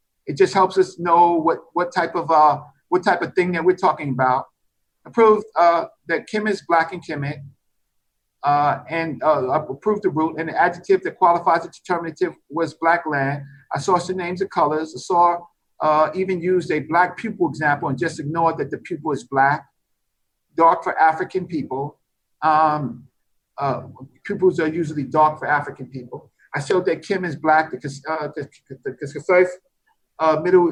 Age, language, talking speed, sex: 50-69, English, 180 wpm, male